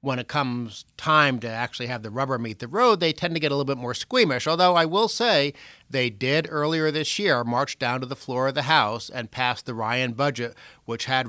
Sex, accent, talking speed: male, American, 240 wpm